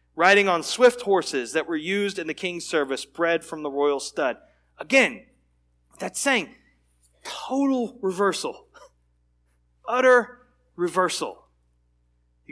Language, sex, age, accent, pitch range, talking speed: English, male, 30-49, American, 150-215 Hz, 115 wpm